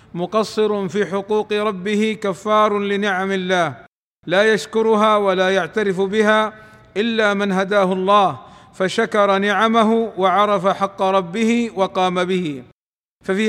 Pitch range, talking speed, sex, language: 190-215 Hz, 105 wpm, male, Arabic